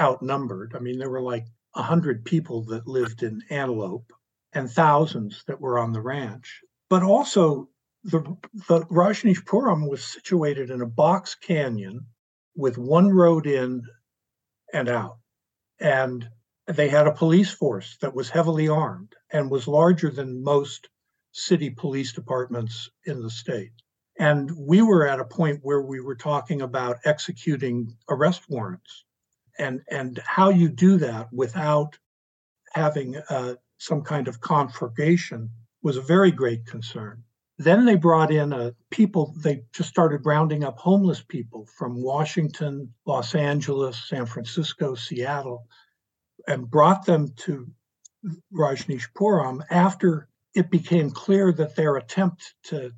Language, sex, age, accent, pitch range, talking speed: English, male, 60-79, American, 125-170 Hz, 140 wpm